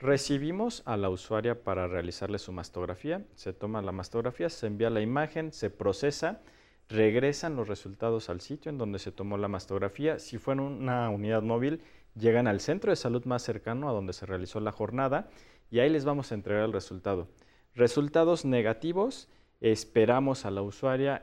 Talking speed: 175 wpm